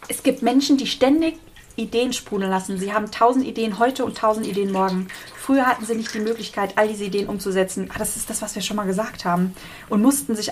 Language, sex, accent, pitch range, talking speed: German, female, German, 190-235 Hz, 225 wpm